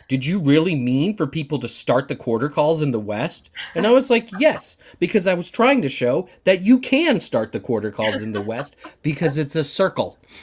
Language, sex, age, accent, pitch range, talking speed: English, male, 30-49, American, 120-160 Hz, 225 wpm